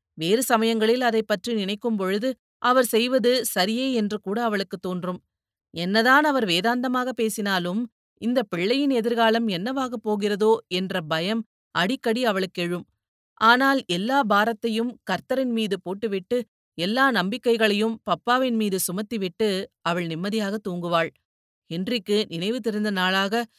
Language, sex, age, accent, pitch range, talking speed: Tamil, female, 30-49, native, 180-230 Hz, 110 wpm